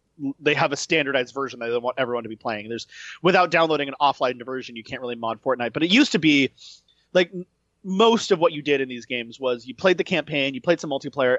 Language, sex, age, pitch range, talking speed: English, male, 30-49, 130-170 Hz, 255 wpm